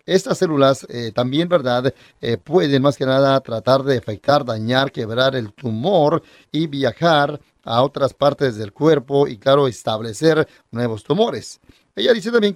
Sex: male